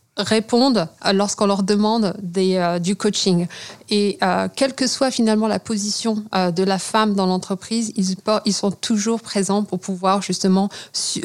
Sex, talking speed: female, 170 wpm